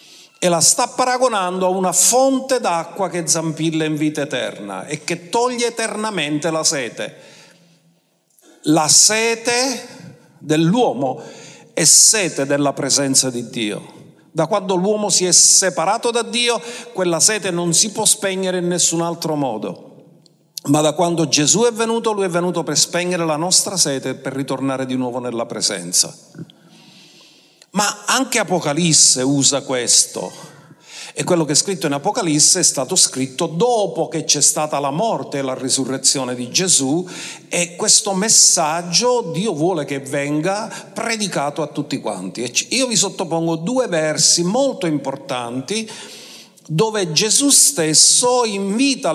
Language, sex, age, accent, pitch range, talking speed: Italian, male, 50-69, native, 150-205 Hz, 140 wpm